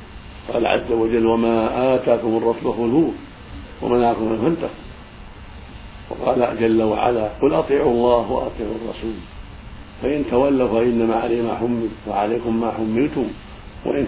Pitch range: 105-120 Hz